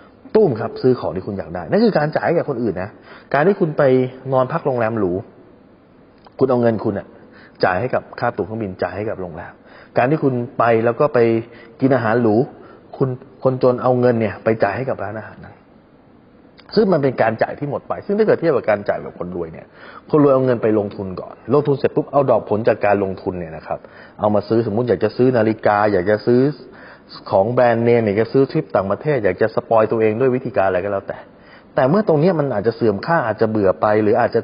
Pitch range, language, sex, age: 110-145 Hz, Thai, male, 20-39